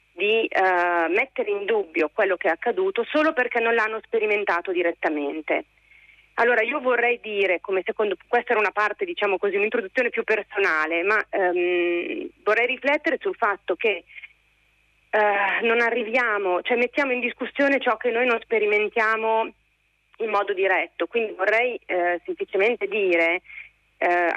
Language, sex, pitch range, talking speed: Italian, female, 180-240 Hz, 135 wpm